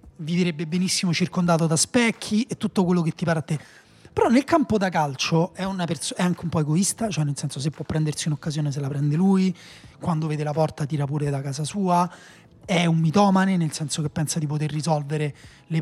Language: Italian